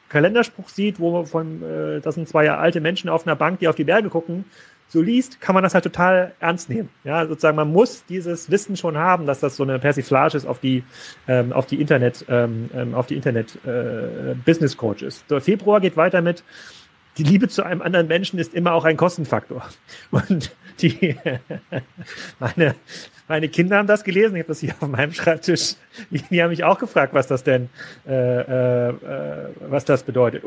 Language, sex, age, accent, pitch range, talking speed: German, male, 30-49, German, 145-185 Hz, 195 wpm